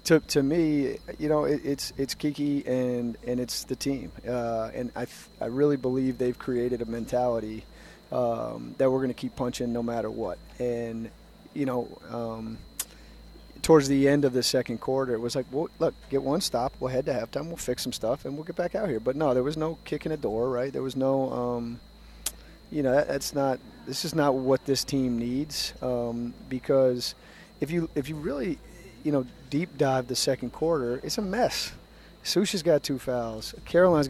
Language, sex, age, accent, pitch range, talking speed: English, male, 30-49, American, 120-145 Hz, 200 wpm